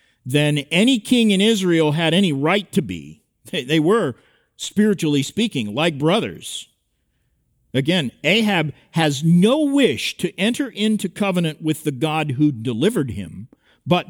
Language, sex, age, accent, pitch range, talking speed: English, male, 50-69, American, 150-215 Hz, 140 wpm